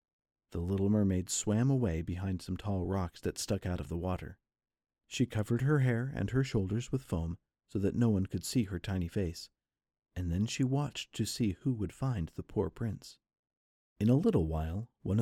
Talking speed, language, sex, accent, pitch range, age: 195 wpm, English, male, American, 95-125 Hz, 50-69